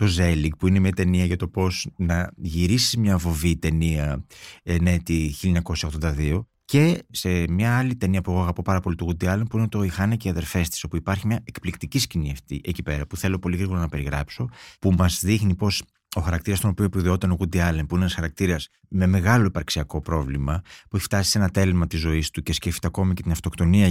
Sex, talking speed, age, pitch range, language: male, 210 wpm, 30-49, 85-115 Hz, Greek